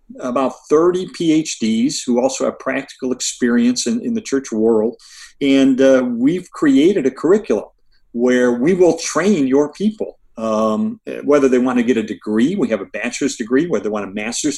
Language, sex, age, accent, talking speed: English, male, 50-69, American, 175 wpm